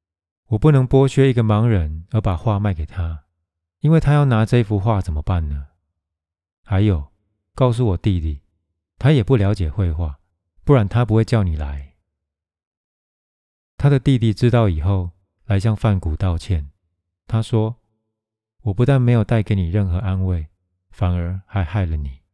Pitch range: 85-110 Hz